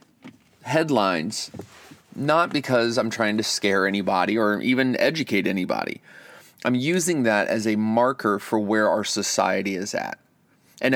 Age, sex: 30-49, male